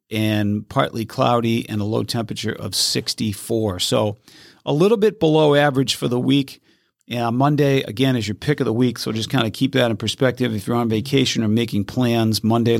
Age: 40-59